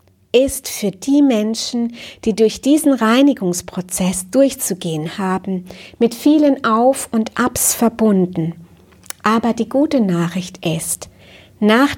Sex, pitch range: female, 185-235 Hz